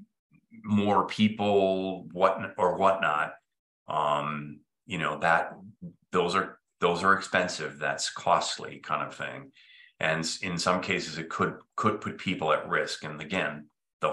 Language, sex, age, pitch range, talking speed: English, male, 30-49, 80-100 Hz, 140 wpm